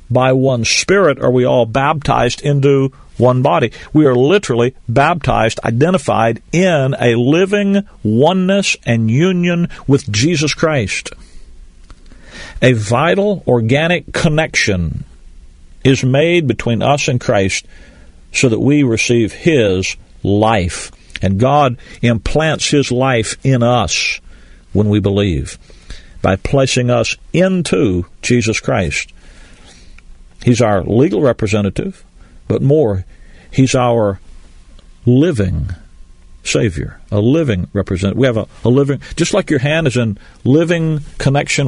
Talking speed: 120 wpm